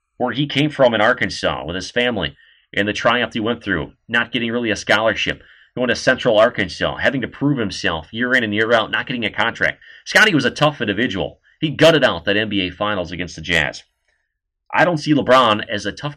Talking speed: 215 wpm